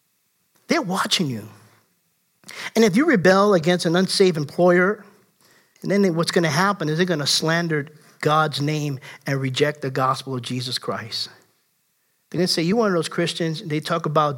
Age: 50-69